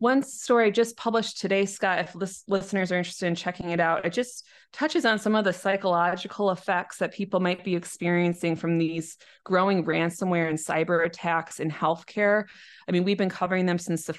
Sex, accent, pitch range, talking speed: female, American, 170-200 Hz, 190 wpm